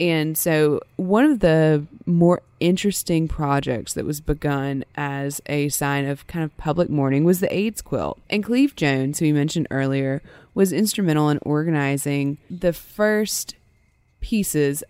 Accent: American